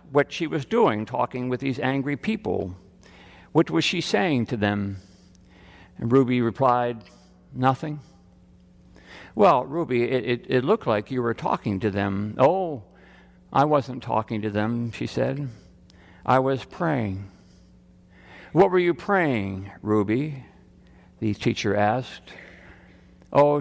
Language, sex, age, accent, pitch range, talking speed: English, male, 60-79, American, 90-125 Hz, 130 wpm